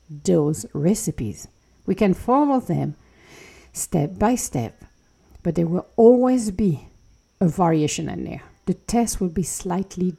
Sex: female